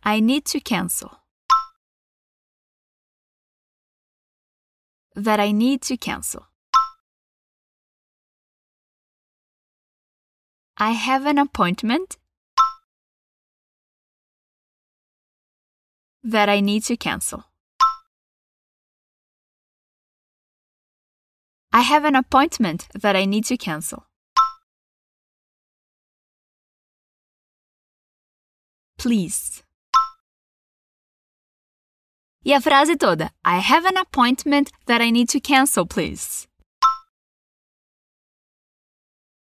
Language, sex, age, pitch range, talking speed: Portuguese, female, 20-39, 215-290 Hz, 65 wpm